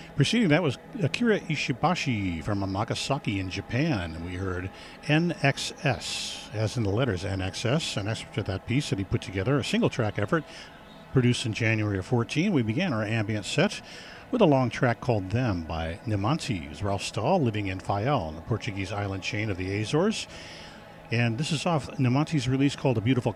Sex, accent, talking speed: male, American, 180 wpm